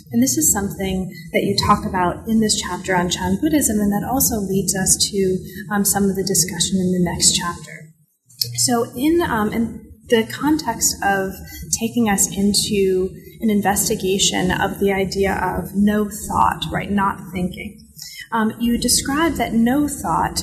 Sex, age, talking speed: female, 30-49, 165 wpm